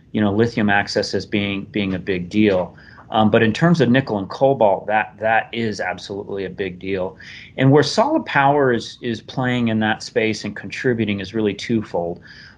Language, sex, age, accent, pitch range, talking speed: English, male, 30-49, American, 105-125 Hz, 190 wpm